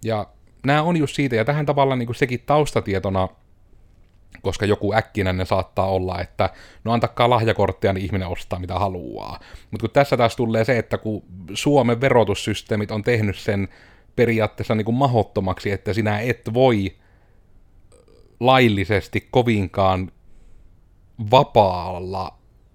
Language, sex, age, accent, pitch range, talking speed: Finnish, male, 30-49, native, 95-120 Hz, 130 wpm